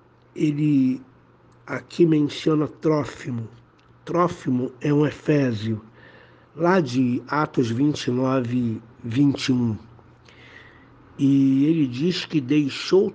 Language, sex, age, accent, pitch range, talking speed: Portuguese, male, 60-79, Brazilian, 120-155 Hz, 80 wpm